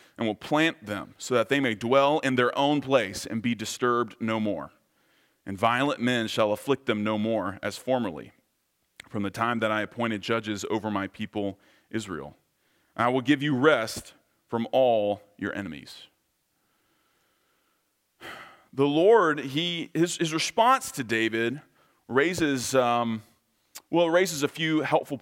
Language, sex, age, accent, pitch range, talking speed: English, male, 30-49, American, 115-155 Hz, 150 wpm